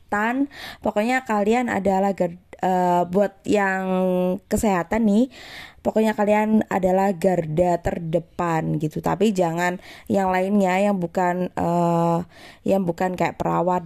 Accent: native